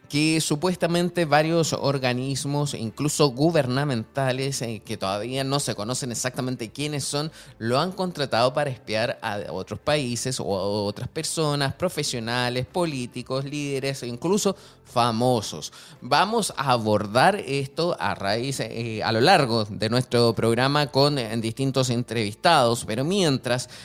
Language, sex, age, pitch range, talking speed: Spanish, male, 20-39, 120-150 Hz, 125 wpm